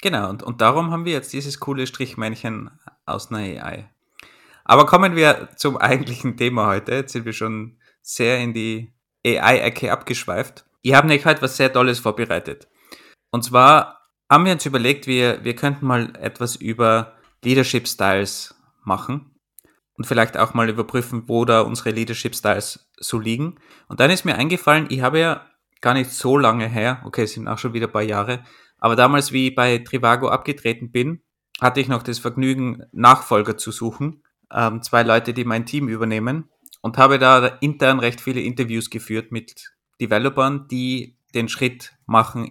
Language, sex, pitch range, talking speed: German, male, 110-130 Hz, 170 wpm